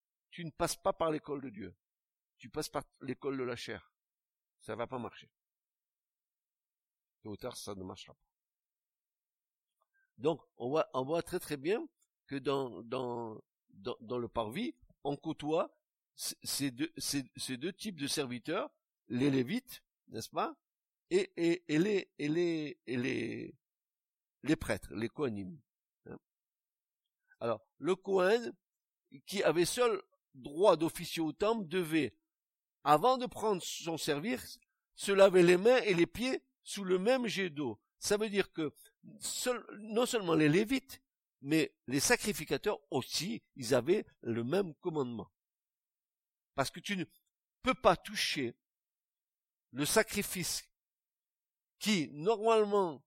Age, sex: 60-79, male